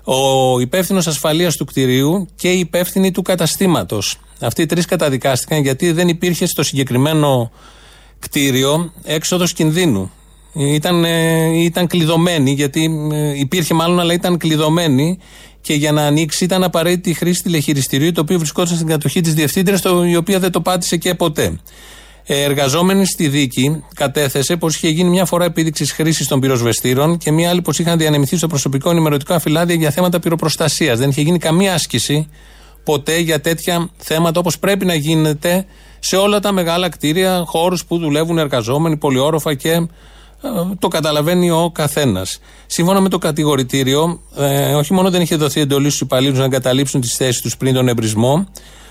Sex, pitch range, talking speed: male, 145-175 Hz, 160 wpm